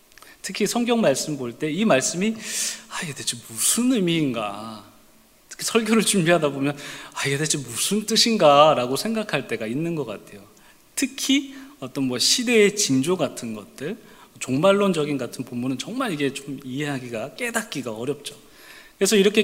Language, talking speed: English, 130 wpm